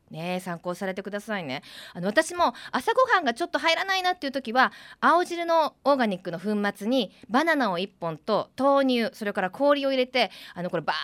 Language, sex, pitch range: Japanese, female, 195-305 Hz